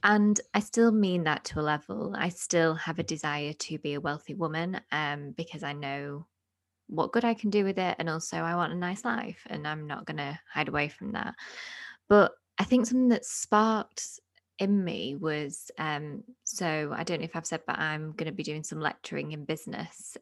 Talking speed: 215 wpm